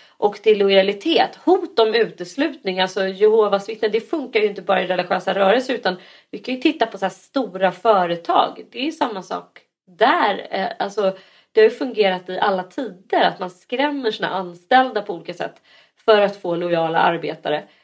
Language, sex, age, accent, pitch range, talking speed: Swedish, female, 30-49, native, 190-270 Hz, 180 wpm